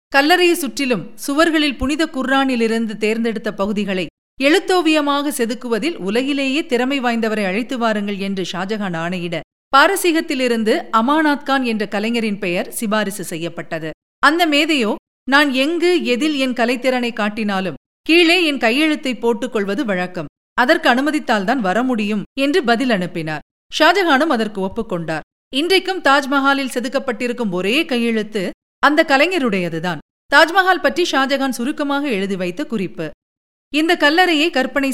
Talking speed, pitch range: 105 wpm, 210-295 Hz